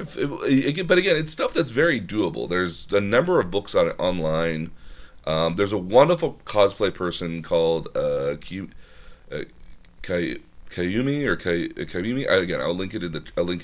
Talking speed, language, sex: 185 wpm, English, male